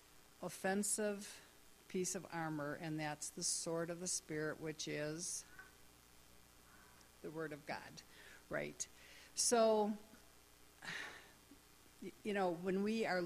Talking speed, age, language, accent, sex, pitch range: 110 wpm, 60-79, English, American, female, 155-200 Hz